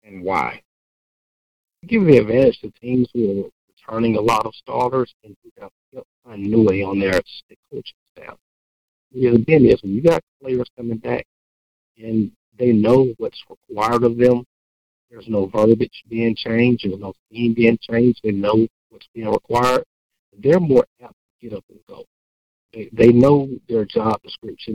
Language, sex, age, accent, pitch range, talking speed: English, male, 50-69, American, 100-125 Hz, 165 wpm